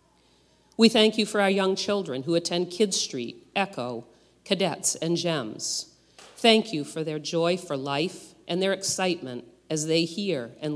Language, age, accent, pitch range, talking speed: English, 50-69, American, 145-185 Hz, 160 wpm